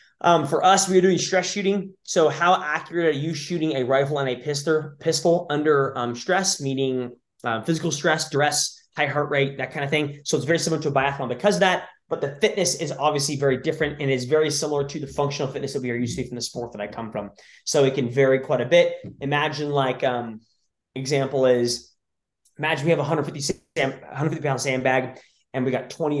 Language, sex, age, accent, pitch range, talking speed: English, male, 20-39, American, 130-160 Hz, 220 wpm